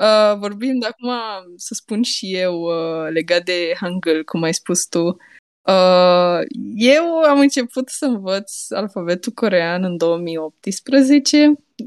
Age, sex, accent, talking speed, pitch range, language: 20-39, female, native, 125 wpm, 180-235 Hz, Romanian